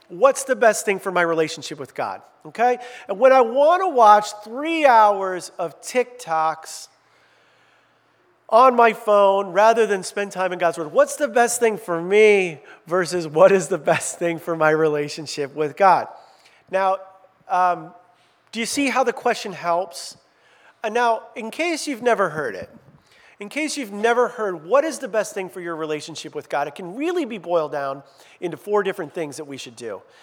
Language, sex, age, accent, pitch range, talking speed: English, male, 40-59, American, 165-235 Hz, 185 wpm